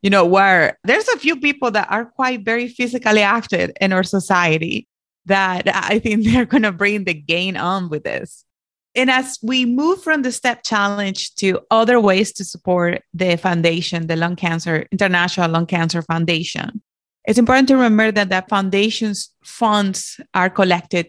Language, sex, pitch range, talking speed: English, female, 180-220 Hz, 170 wpm